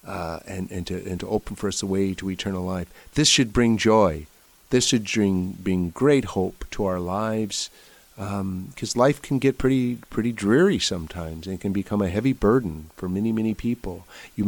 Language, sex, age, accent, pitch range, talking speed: English, male, 50-69, American, 90-110 Hz, 195 wpm